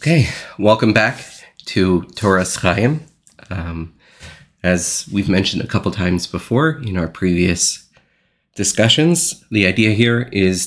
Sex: male